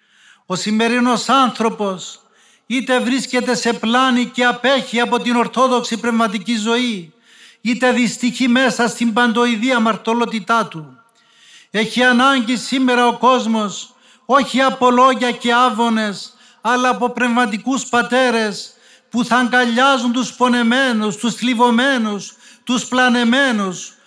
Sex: male